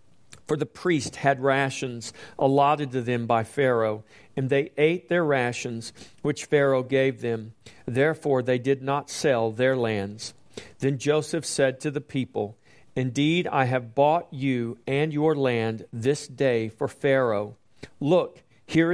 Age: 40-59